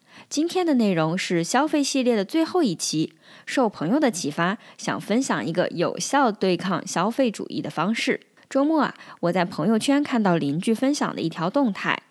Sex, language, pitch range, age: female, Chinese, 180-265 Hz, 20-39